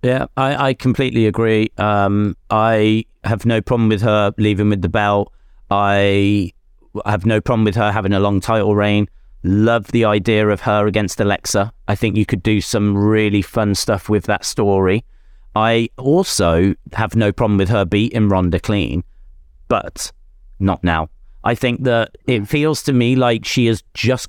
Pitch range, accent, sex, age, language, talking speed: 95-115 Hz, British, male, 40-59, English, 175 wpm